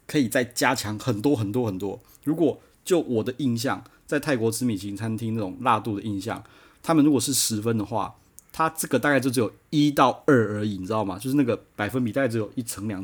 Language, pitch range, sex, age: Chinese, 110-145 Hz, male, 30-49